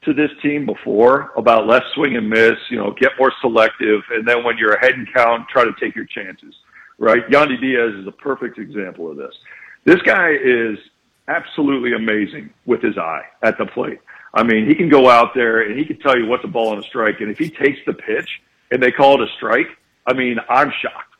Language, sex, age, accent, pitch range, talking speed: English, male, 50-69, American, 115-155 Hz, 225 wpm